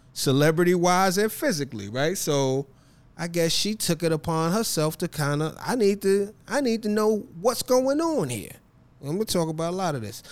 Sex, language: male, English